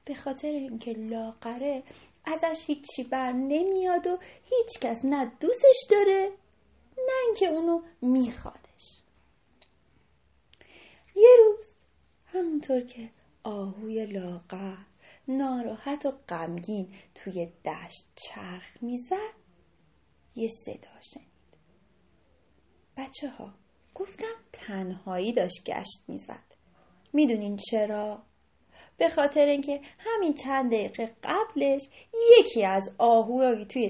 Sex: female